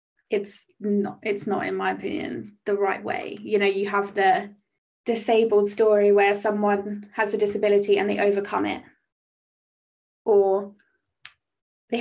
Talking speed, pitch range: 140 wpm, 200-220 Hz